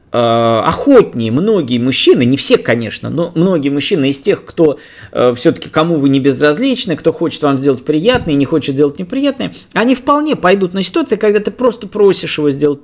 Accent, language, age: native, Russian, 20-39